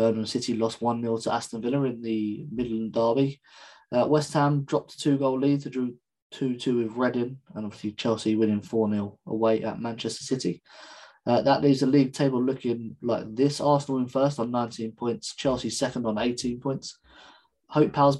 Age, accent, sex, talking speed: 20-39, British, male, 190 wpm